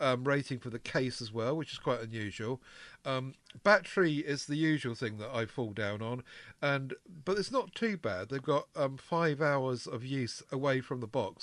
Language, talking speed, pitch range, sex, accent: English, 205 wpm, 115-145 Hz, male, British